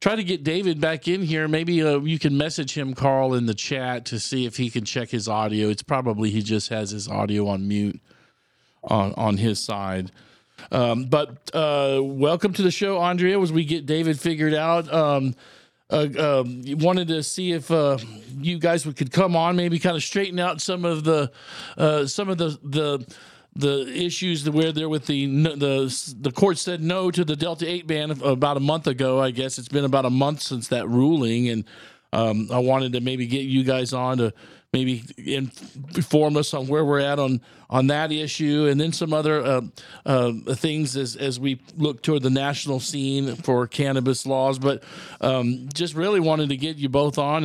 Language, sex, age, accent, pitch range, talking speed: English, male, 50-69, American, 125-160 Hz, 200 wpm